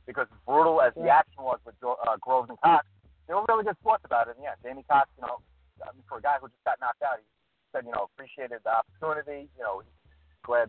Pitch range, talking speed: 100-140 Hz, 240 wpm